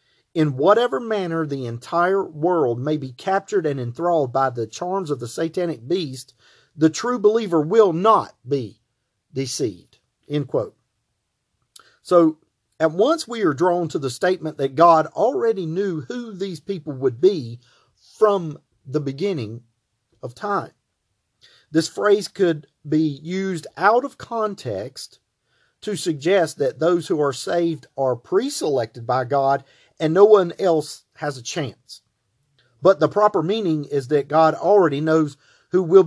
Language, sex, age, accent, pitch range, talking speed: English, male, 40-59, American, 140-195 Hz, 140 wpm